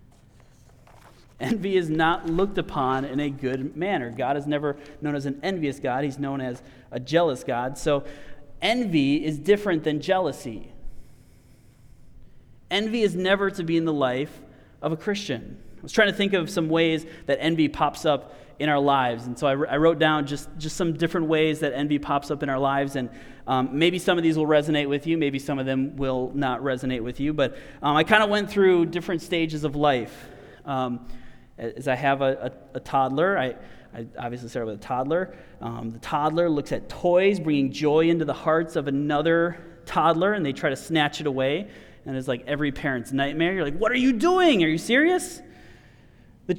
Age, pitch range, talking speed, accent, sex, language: 30-49, 135-170 Hz, 195 wpm, American, male, English